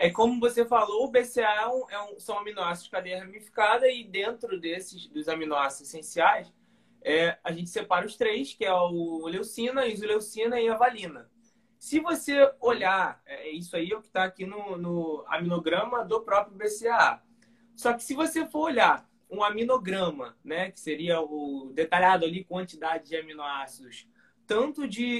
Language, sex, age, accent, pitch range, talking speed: Portuguese, male, 20-39, Brazilian, 175-235 Hz, 165 wpm